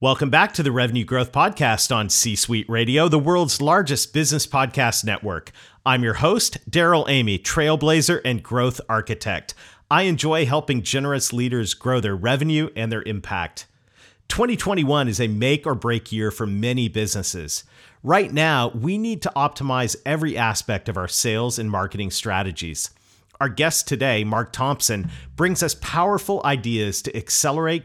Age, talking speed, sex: 40-59, 155 wpm, male